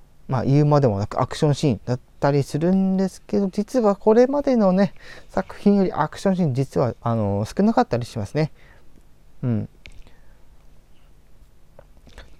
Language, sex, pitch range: Japanese, male, 105-160 Hz